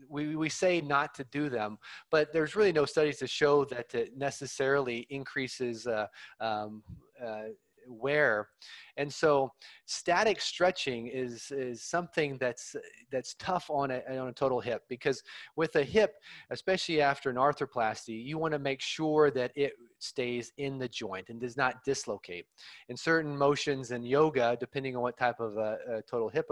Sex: male